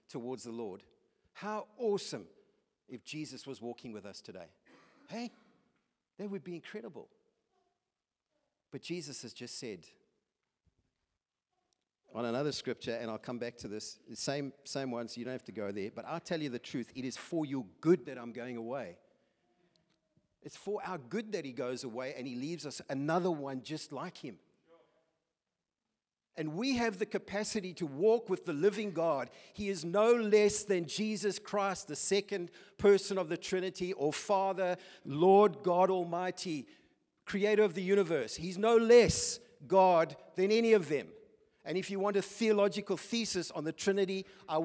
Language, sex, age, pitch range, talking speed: English, male, 50-69, 150-215 Hz, 170 wpm